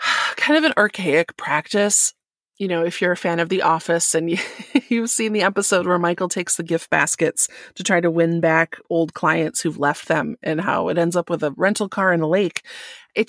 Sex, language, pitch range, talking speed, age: female, English, 165-215 Hz, 215 wpm, 30-49